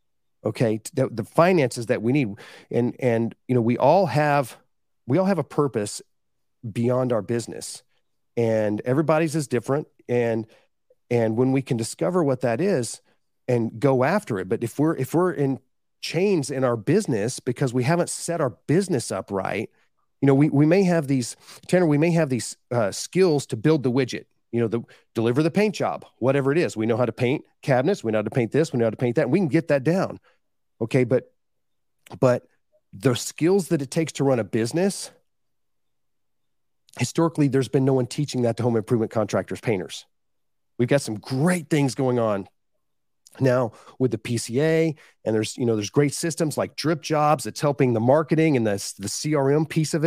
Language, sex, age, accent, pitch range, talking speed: English, male, 40-59, American, 115-155 Hz, 195 wpm